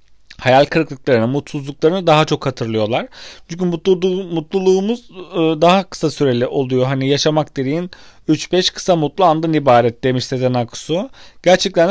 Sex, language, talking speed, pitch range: male, Turkish, 130 wpm, 140-180 Hz